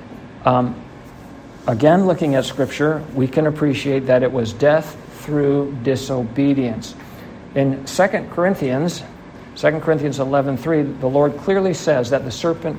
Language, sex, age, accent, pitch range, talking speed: English, male, 60-79, American, 125-150 Hz, 125 wpm